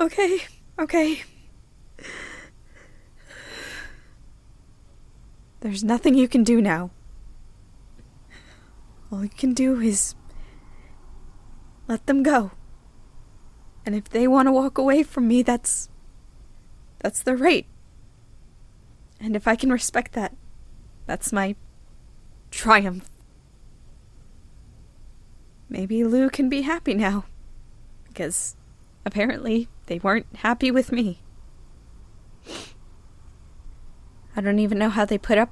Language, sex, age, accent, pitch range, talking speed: English, female, 20-39, American, 155-235 Hz, 100 wpm